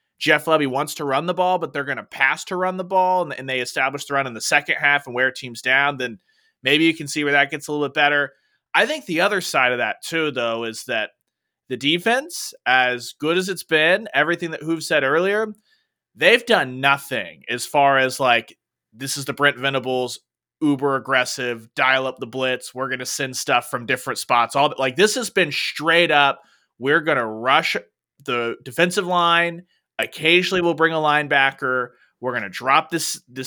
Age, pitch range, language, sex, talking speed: 30-49, 135-180 Hz, English, male, 195 wpm